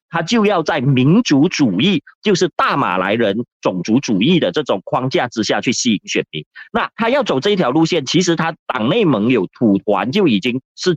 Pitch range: 135-195 Hz